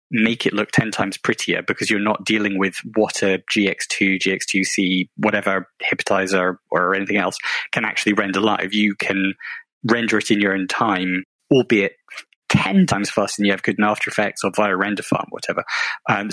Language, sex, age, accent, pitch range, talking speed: English, male, 20-39, British, 100-115 Hz, 185 wpm